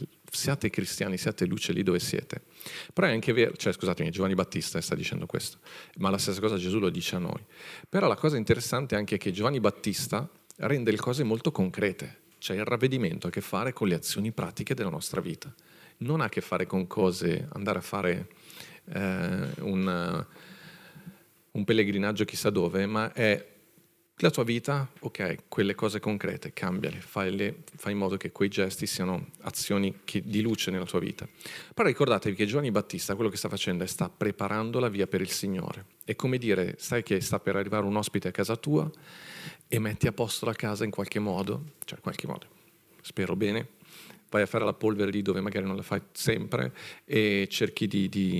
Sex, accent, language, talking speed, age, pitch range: male, native, Italian, 195 wpm, 40-59, 95-125 Hz